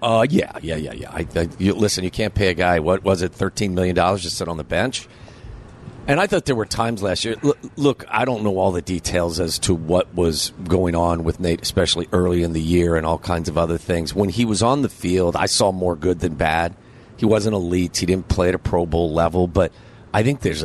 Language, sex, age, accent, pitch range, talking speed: English, male, 40-59, American, 85-105 Hz, 250 wpm